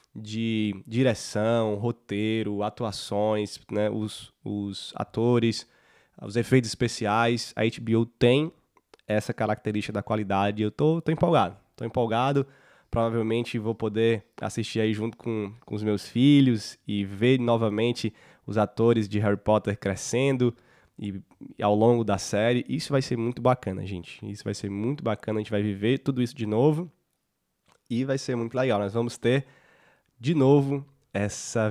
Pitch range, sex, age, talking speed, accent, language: 105-125 Hz, male, 20-39, 150 wpm, Brazilian, Portuguese